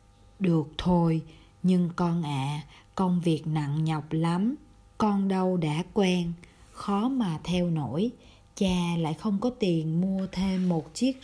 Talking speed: 145 wpm